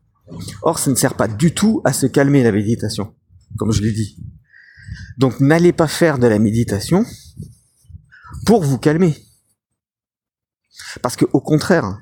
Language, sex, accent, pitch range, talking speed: French, male, French, 115-160 Hz, 150 wpm